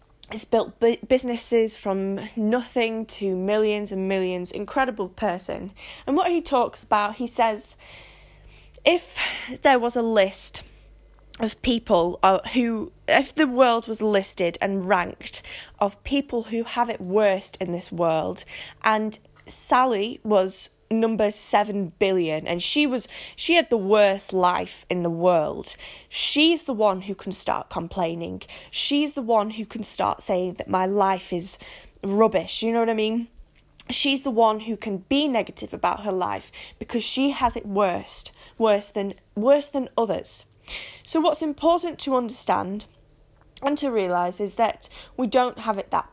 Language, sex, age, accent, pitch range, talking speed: English, female, 10-29, British, 195-250 Hz, 155 wpm